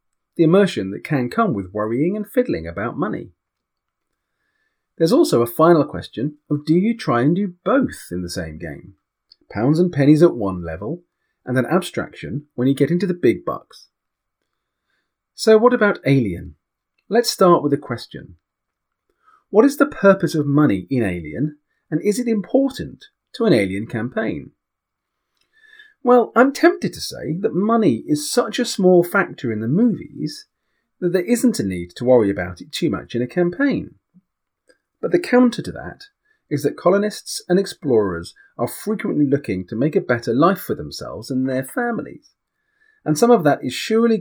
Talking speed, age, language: 170 wpm, 40-59, English